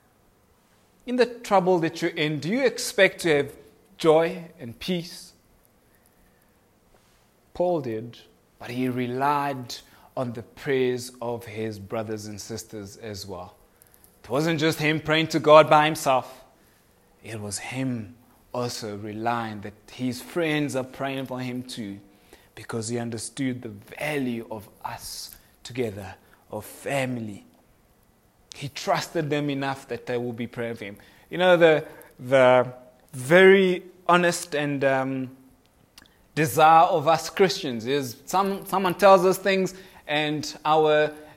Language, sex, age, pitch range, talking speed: English, male, 30-49, 120-185 Hz, 135 wpm